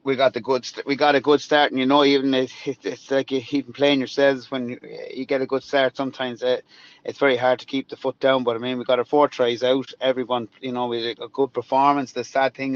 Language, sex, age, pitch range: English, male, 30-49, 115-135 Hz